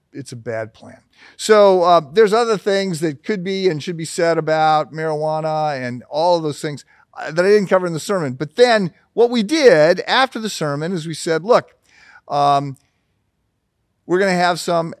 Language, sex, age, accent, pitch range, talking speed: English, male, 50-69, American, 130-165 Hz, 190 wpm